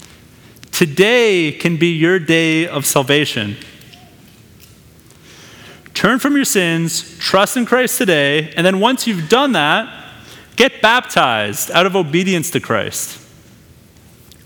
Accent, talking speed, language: American, 115 wpm, English